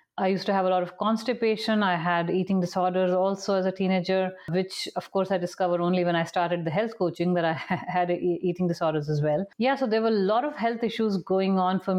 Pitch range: 175-195 Hz